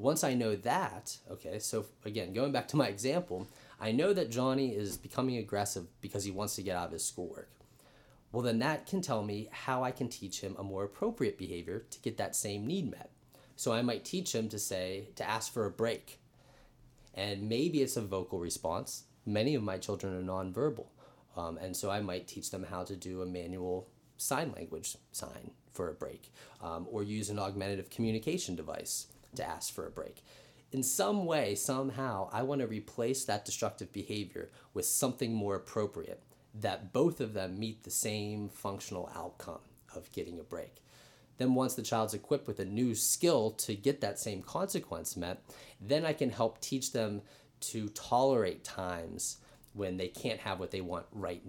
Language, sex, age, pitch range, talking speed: English, male, 30-49, 100-130 Hz, 190 wpm